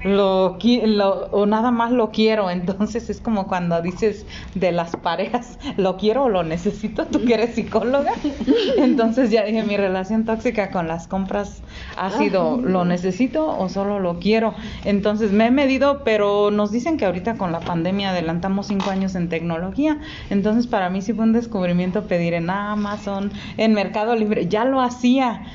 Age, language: 30-49, Spanish